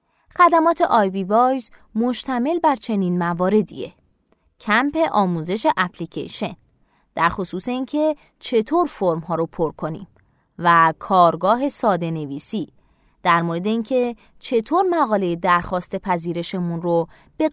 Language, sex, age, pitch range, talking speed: Persian, female, 20-39, 175-240 Hz, 110 wpm